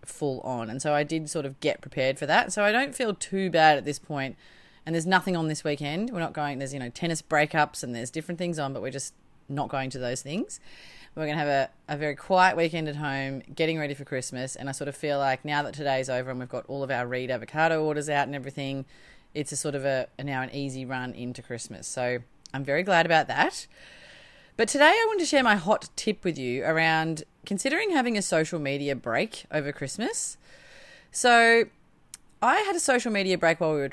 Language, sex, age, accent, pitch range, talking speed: English, female, 30-49, Australian, 135-175 Hz, 235 wpm